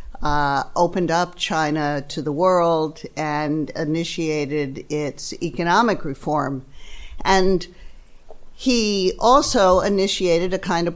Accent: American